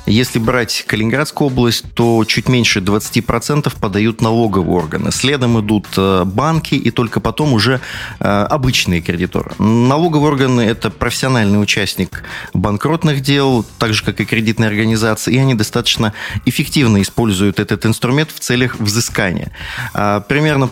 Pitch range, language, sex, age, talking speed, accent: 105-130 Hz, Russian, male, 30-49, 125 wpm, native